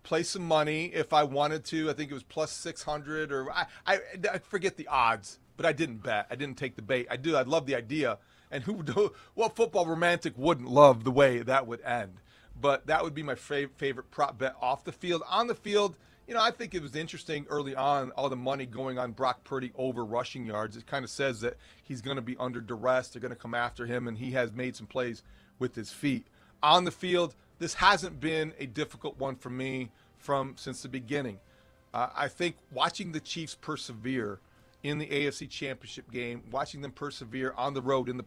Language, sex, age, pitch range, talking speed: English, male, 40-59, 125-155 Hz, 225 wpm